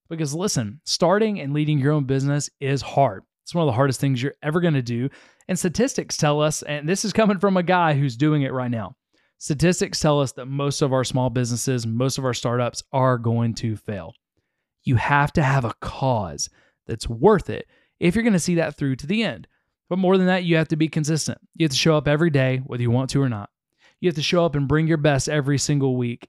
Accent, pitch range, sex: American, 130-165 Hz, male